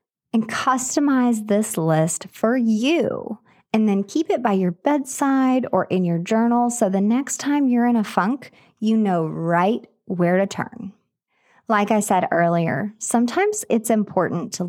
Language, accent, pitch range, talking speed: English, American, 180-235 Hz, 160 wpm